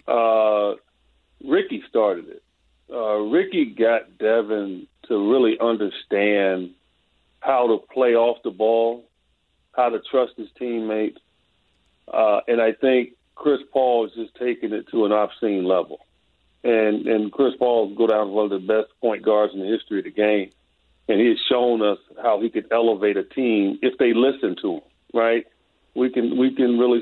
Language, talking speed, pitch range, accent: English, 170 wpm, 105-130 Hz, American